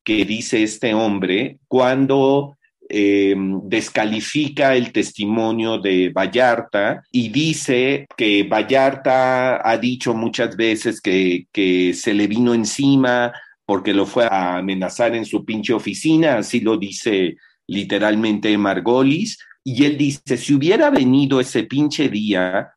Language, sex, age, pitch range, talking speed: English, male, 40-59, 105-140 Hz, 125 wpm